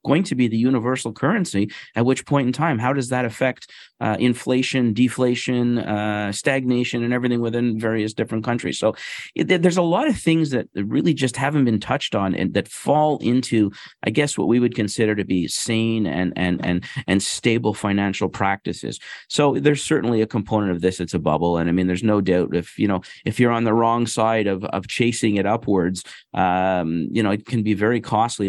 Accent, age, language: American, 40-59, English